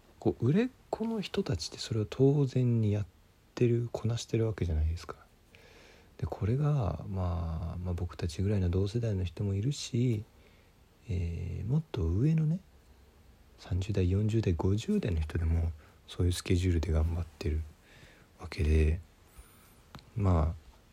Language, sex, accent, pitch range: Japanese, male, native, 80-110 Hz